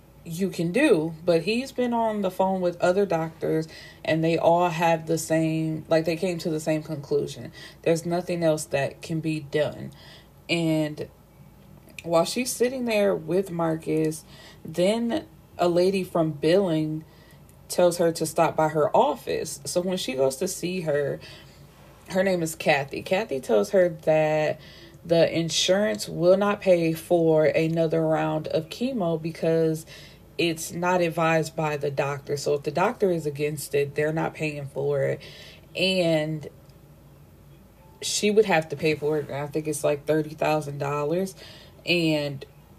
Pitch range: 155-180 Hz